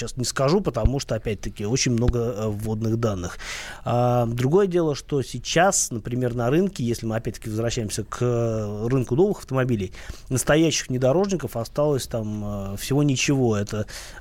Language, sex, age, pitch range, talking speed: Russian, male, 20-39, 110-135 Hz, 135 wpm